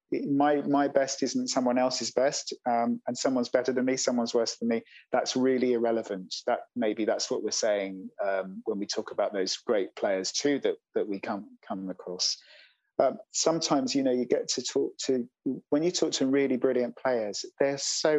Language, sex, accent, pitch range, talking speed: English, male, British, 115-165 Hz, 195 wpm